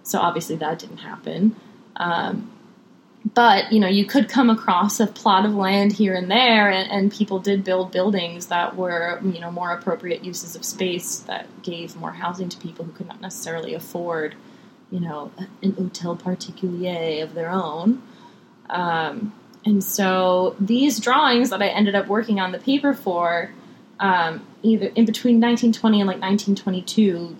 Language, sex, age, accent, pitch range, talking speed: English, female, 20-39, American, 175-215 Hz, 165 wpm